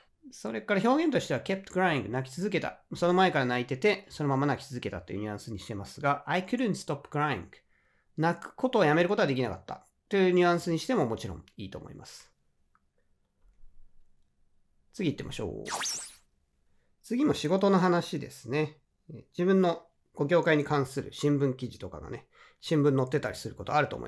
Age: 40-59